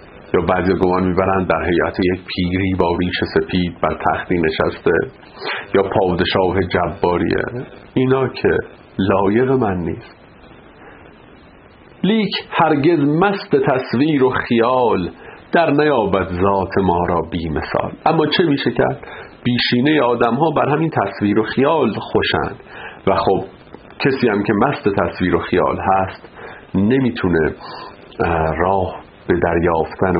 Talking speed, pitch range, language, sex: 120 wpm, 95-130 Hz, Persian, male